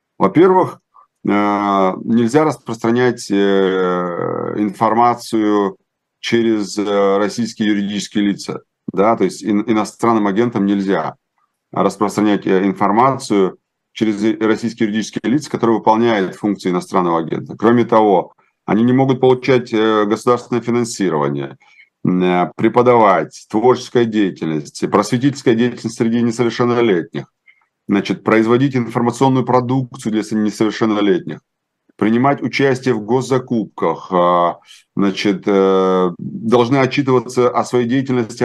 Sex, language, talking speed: male, Russian, 85 wpm